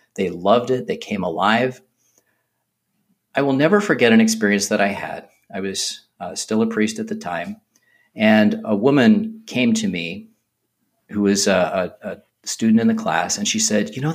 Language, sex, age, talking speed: English, male, 40-59, 180 wpm